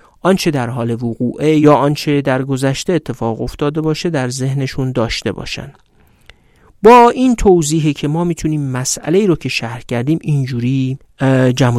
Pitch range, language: 125-165 Hz, Persian